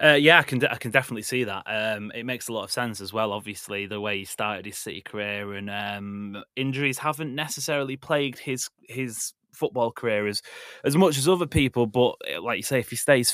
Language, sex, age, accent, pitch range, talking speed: English, male, 20-39, British, 105-130 Hz, 220 wpm